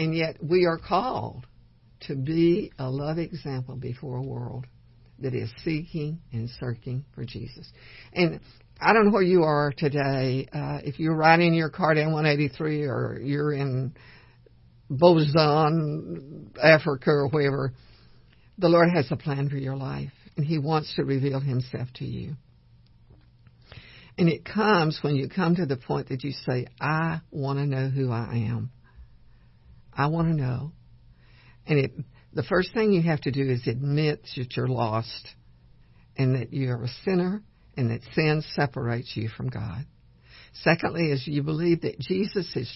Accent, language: American, English